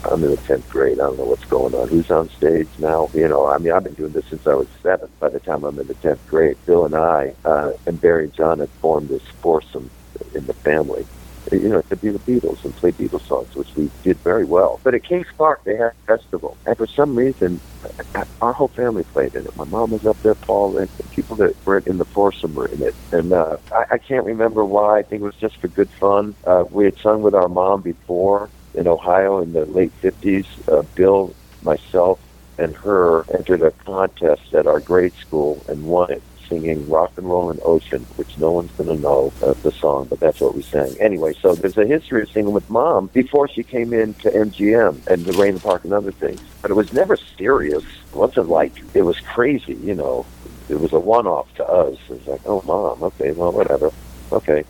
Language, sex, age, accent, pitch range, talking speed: English, male, 50-69, American, 90-120 Hz, 235 wpm